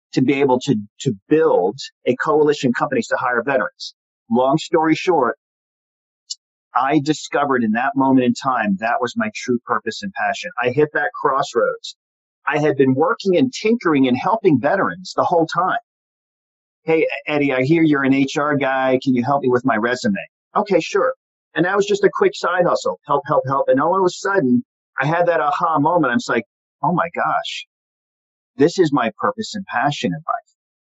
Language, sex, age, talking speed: English, male, 40-59, 190 wpm